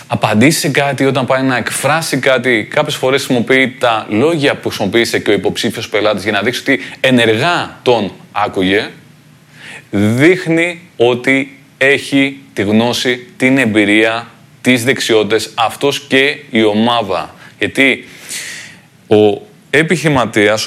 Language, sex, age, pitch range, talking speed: Greek, male, 20-39, 110-135 Hz, 120 wpm